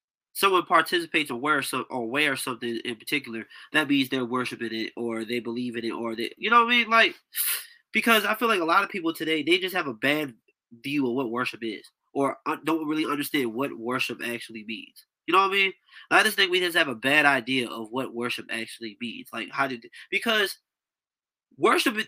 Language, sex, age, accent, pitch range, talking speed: English, male, 20-39, American, 125-180 Hz, 215 wpm